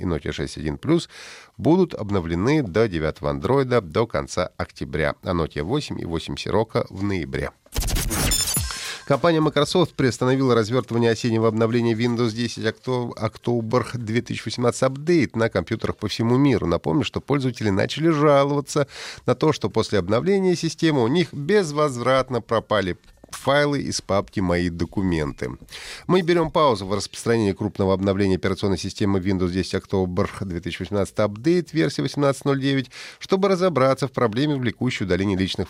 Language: Russian